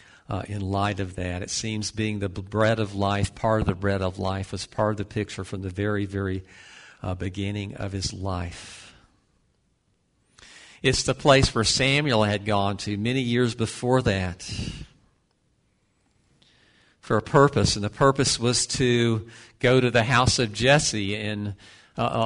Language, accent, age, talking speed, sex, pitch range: English, American, 50-69, 160 wpm, male, 105-135 Hz